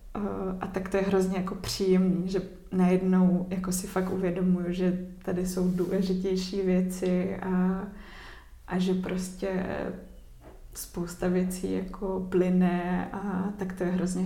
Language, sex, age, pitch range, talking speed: Czech, female, 20-39, 180-195 Hz, 130 wpm